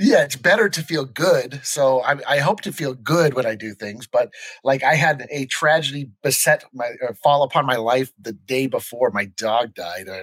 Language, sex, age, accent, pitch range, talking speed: English, male, 30-49, American, 110-150 Hz, 225 wpm